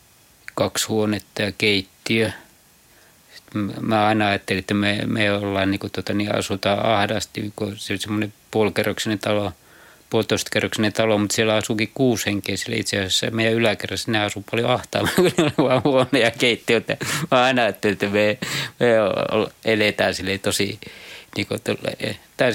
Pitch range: 100-115 Hz